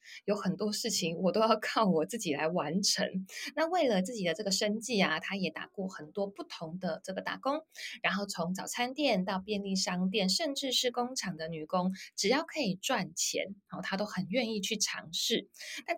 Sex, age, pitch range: female, 20-39, 185-235 Hz